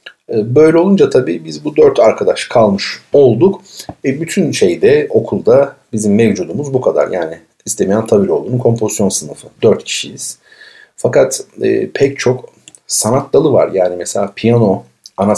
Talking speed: 140 wpm